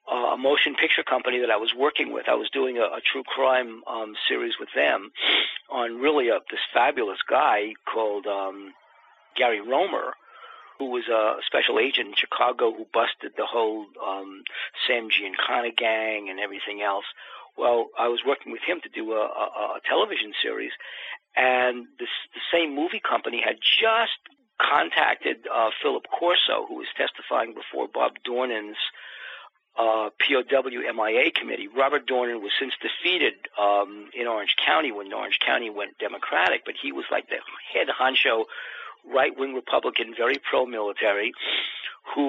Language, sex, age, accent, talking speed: English, male, 50-69, American, 155 wpm